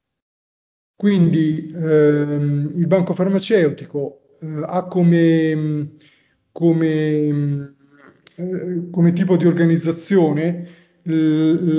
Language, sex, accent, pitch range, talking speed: Italian, male, native, 150-170 Hz, 75 wpm